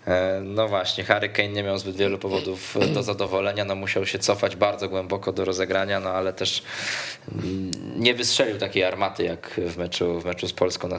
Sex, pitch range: male, 90-105 Hz